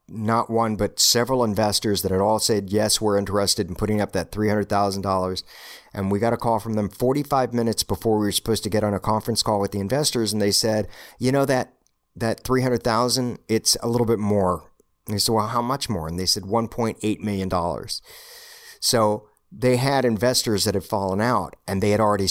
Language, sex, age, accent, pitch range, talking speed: English, male, 50-69, American, 100-120 Hz, 205 wpm